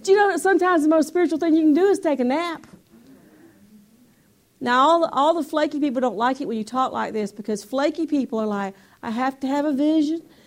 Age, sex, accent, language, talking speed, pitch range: 40-59, female, American, English, 240 wpm, 225-295 Hz